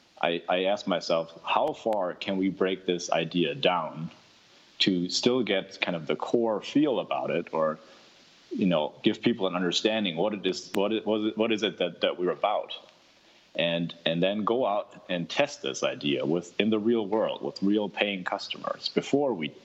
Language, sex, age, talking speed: English, male, 30-49, 190 wpm